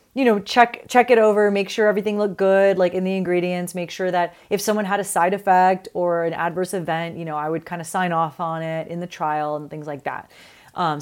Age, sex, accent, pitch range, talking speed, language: 30-49, female, American, 165-205 Hz, 250 wpm, English